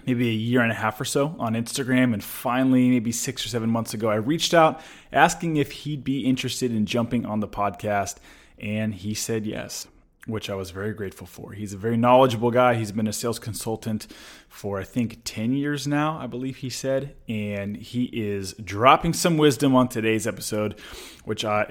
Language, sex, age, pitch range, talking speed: English, male, 20-39, 105-130 Hz, 200 wpm